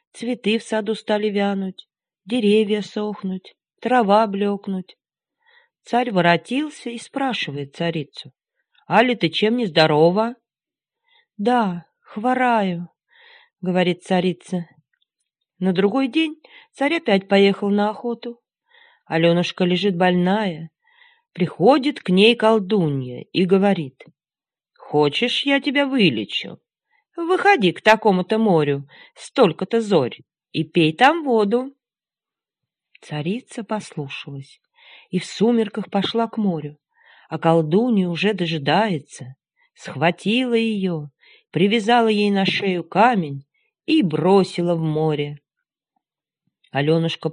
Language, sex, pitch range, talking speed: Russian, female, 170-235 Hz, 100 wpm